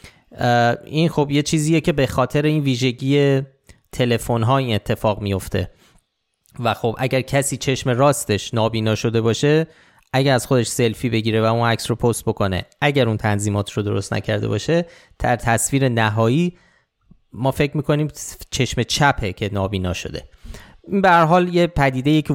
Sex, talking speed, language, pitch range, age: male, 150 wpm, Persian, 115-150 Hz, 30-49